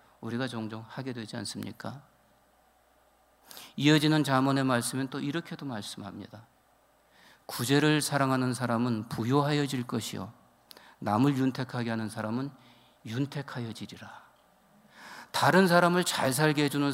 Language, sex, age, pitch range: Korean, male, 50-69, 115-145 Hz